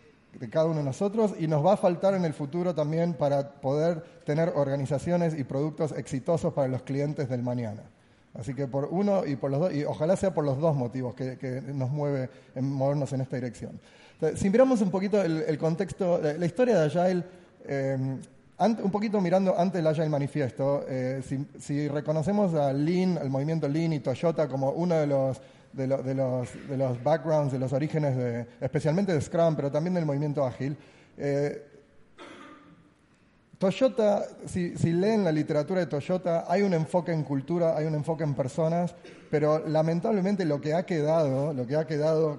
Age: 30-49